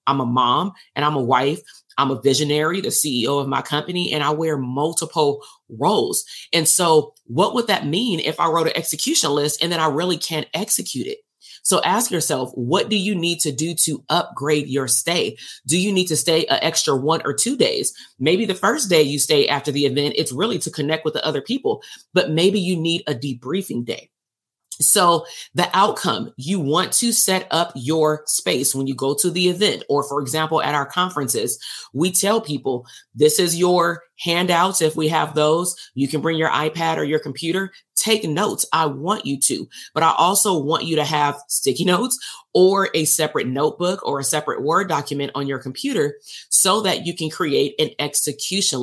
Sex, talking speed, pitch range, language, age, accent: female, 200 wpm, 145-180 Hz, English, 30-49, American